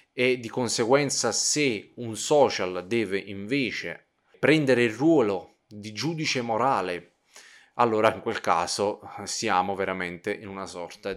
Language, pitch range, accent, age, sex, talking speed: Italian, 95-115 Hz, native, 20-39, male, 125 wpm